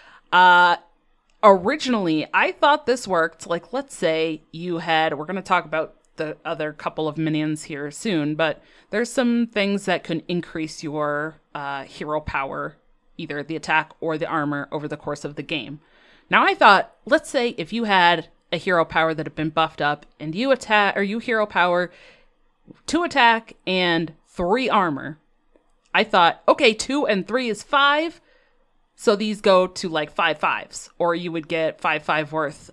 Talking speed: 175 wpm